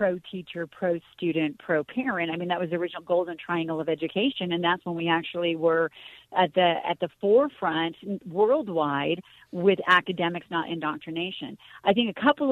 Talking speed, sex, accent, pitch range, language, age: 160 wpm, female, American, 165-205 Hz, English, 40-59